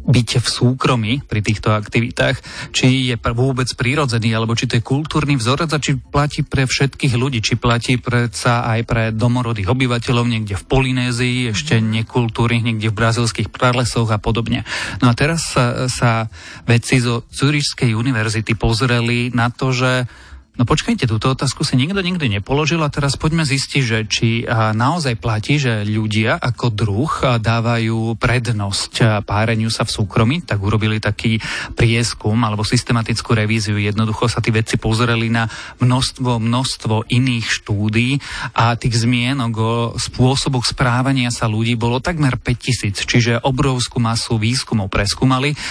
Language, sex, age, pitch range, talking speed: Slovak, male, 30-49, 115-130 Hz, 145 wpm